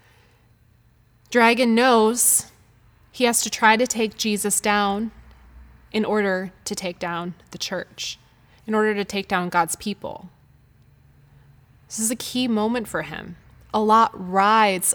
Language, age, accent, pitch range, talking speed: English, 20-39, American, 135-210 Hz, 135 wpm